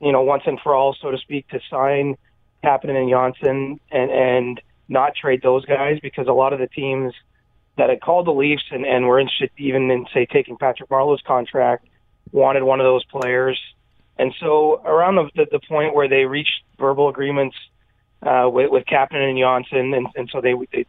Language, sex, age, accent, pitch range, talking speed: English, male, 30-49, American, 125-140 Hz, 200 wpm